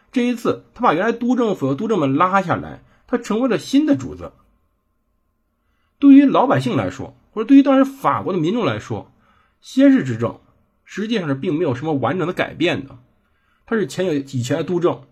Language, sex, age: Chinese, male, 50-69